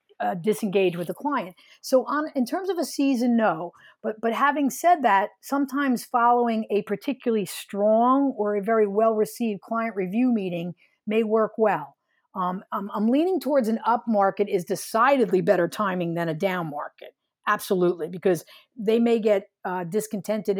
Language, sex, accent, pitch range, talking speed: English, female, American, 190-230 Hz, 165 wpm